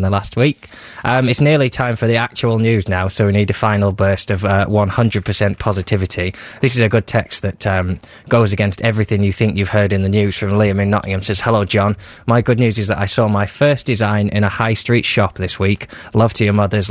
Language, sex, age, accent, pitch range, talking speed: English, male, 20-39, British, 95-110 Hz, 240 wpm